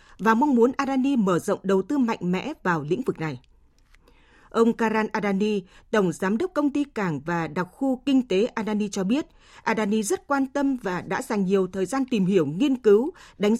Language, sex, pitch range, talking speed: Vietnamese, female, 195-260 Hz, 205 wpm